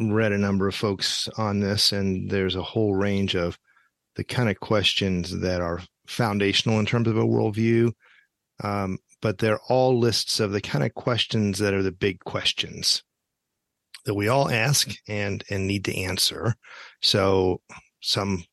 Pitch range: 95-115 Hz